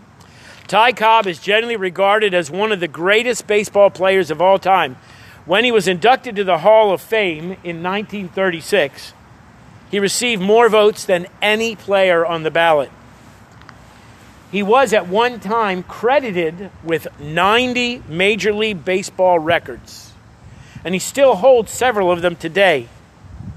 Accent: American